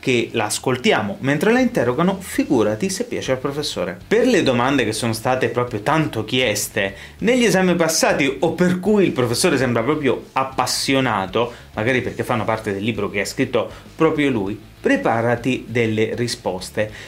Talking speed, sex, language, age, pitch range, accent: 155 wpm, male, Italian, 30-49, 115-185 Hz, native